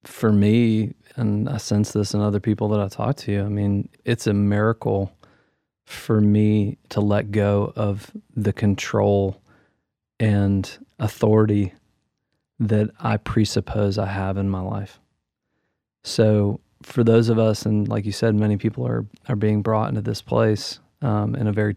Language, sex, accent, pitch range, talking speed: English, male, American, 105-115 Hz, 160 wpm